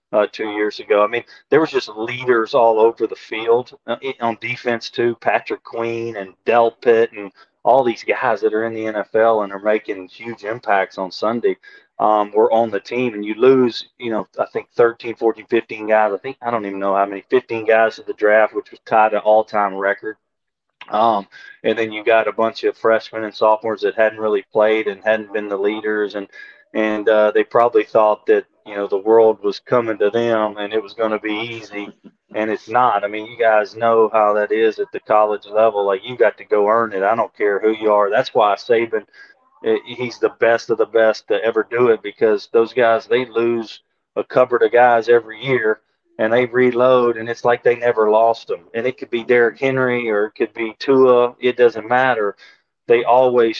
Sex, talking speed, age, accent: male, 220 wpm, 20-39, American